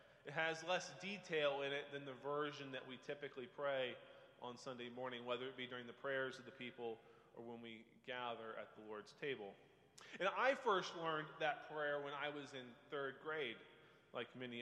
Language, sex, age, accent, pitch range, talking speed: English, male, 30-49, American, 135-170 Hz, 195 wpm